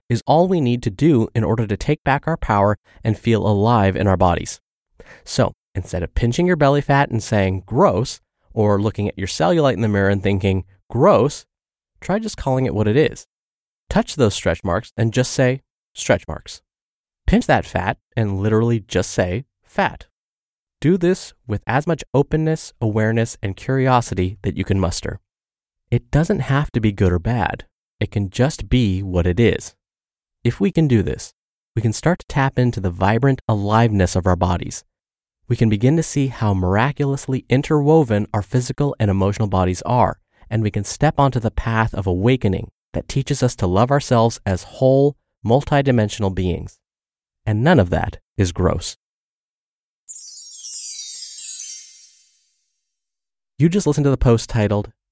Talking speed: 170 wpm